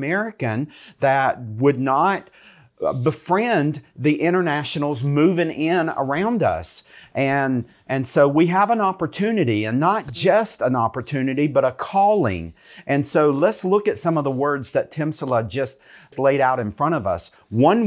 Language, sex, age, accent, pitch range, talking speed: English, male, 50-69, American, 125-165 Hz, 150 wpm